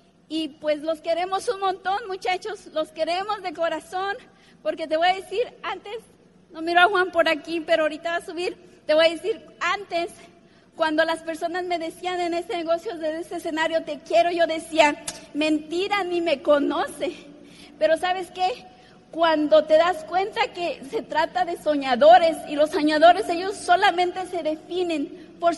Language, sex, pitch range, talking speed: Spanish, female, 315-365 Hz, 170 wpm